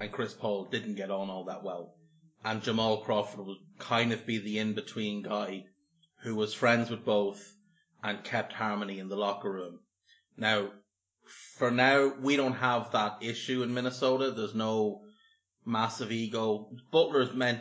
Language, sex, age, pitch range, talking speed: English, male, 30-49, 105-125 Hz, 165 wpm